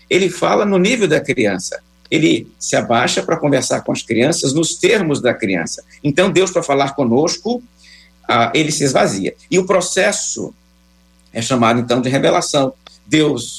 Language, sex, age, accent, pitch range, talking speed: Portuguese, male, 60-79, Brazilian, 130-180 Hz, 155 wpm